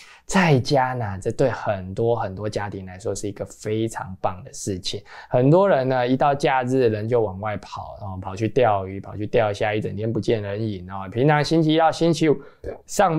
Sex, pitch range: male, 105-155 Hz